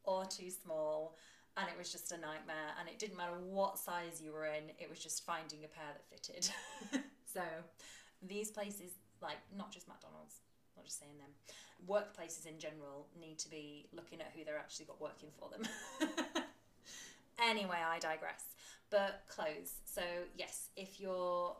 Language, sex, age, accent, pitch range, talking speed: English, female, 20-39, British, 160-210 Hz, 170 wpm